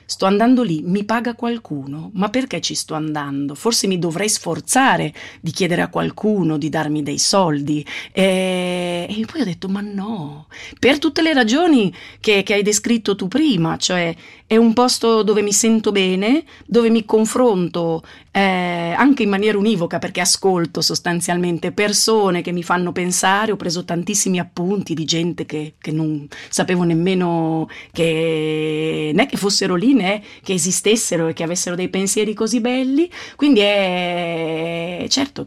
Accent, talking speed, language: native, 155 wpm, Italian